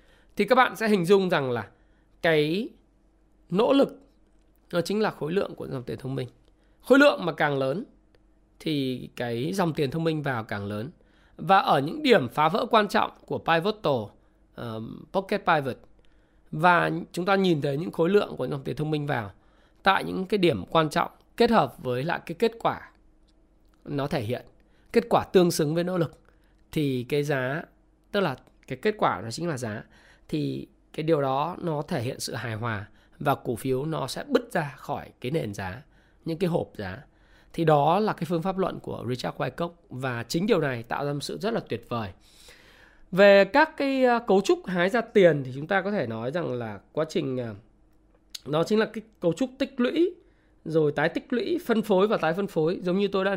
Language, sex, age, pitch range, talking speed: Vietnamese, male, 20-39, 130-200 Hz, 205 wpm